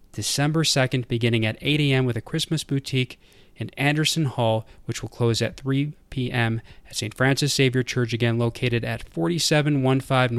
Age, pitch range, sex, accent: 30-49, 110-140 Hz, male, American